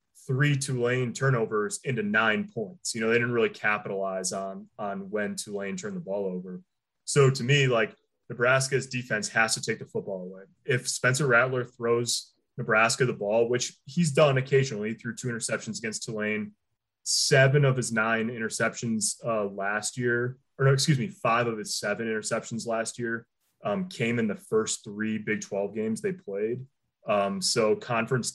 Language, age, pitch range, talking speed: English, 20-39, 110-140 Hz, 170 wpm